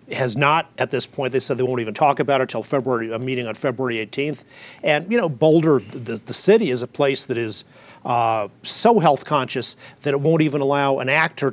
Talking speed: 225 wpm